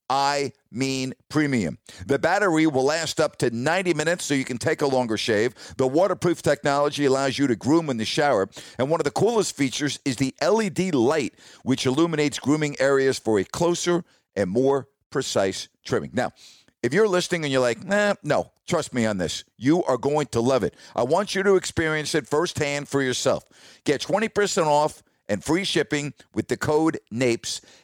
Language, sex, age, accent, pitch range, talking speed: English, male, 50-69, American, 125-160 Hz, 185 wpm